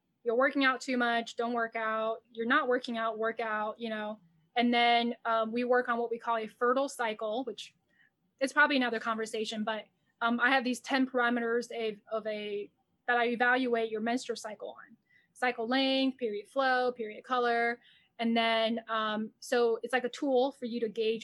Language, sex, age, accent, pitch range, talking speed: English, female, 10-29, American, 215-245 Hz, 190 wpm